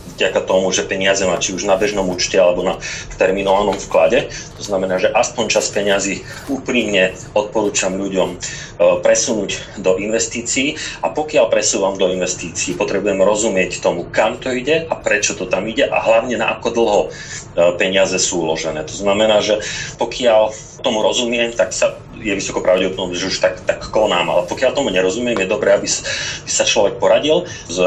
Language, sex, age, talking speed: Slovak, male, 40-59, 165 wpm